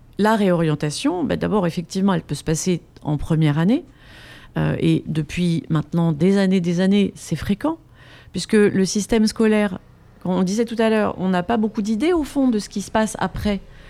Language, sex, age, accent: French, female, 30-49, French